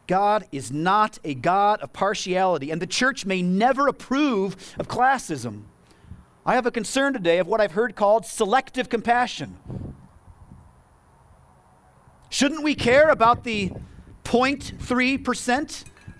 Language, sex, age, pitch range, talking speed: English, male, 40-59, 130-200 Hz, 120 wpm